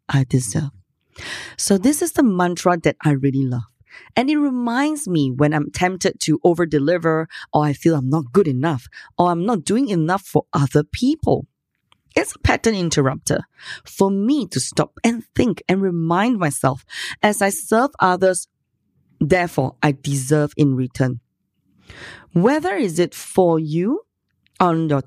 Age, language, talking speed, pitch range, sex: 20-39, English, 155 wpm, 140-200 Hz, female